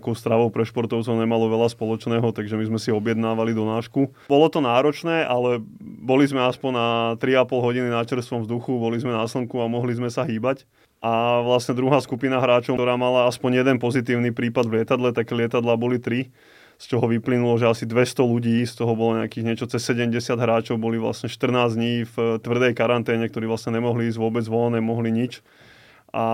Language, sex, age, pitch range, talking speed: Slovak, male, 20-39, 115-125 Hz, 190 wpm